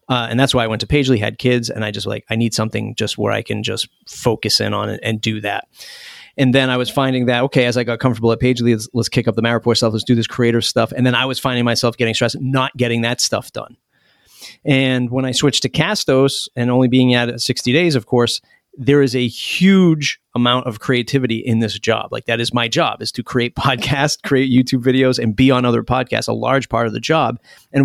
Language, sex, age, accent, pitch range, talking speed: English, male, 30-49, American, 115-135 Hz, 250 wpm